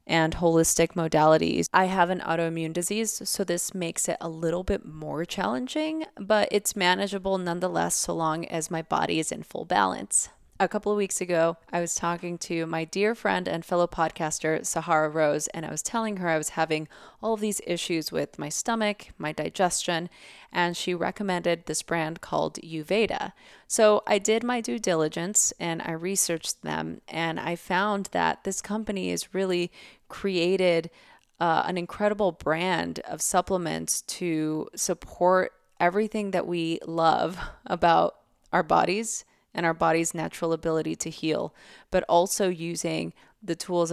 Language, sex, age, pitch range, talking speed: English, female, 20-39, 165-195 Hz, 160 wpm